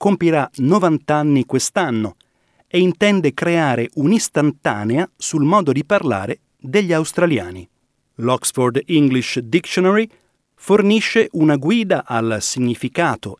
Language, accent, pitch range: Italian, native, 120-165 Hz